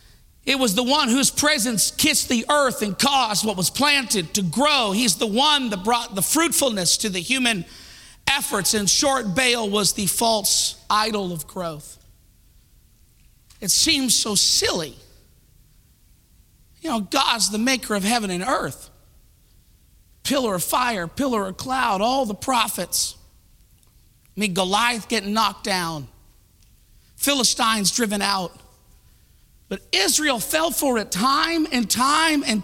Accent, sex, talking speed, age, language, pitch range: American, male, 140 wpm, 50-69, English, 205-290 Hz